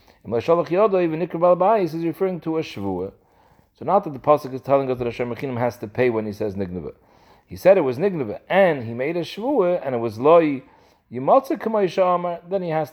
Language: English